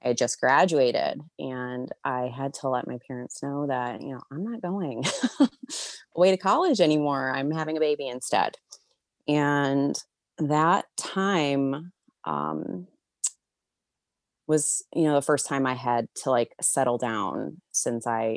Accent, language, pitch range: American, English, 125-175 Hz